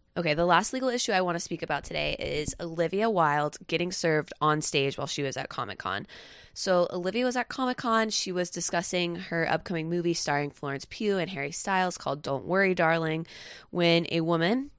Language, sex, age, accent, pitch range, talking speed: English, female, 20-39, American, 155-190 Hz, 190 wpm